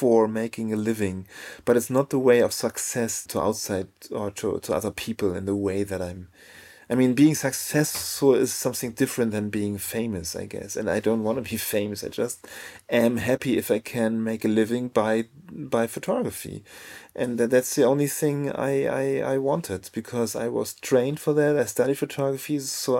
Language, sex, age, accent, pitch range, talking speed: English, male, 30-49, German, 110-130 Hz, 195 wpm